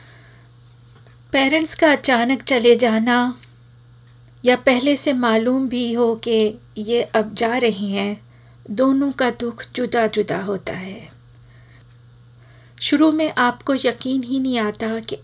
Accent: native